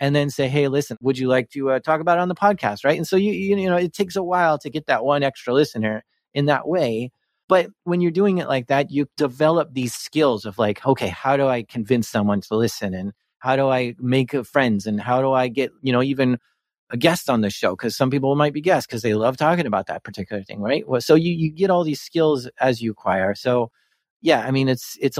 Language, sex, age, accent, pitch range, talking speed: English, male, 30-49, American, 125-155 Hz, 255 wpm